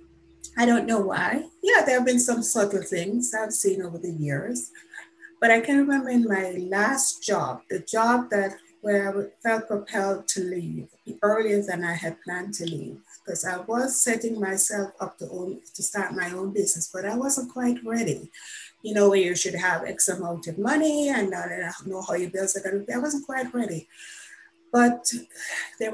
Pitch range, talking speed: 190-275 Hz, 185 wpm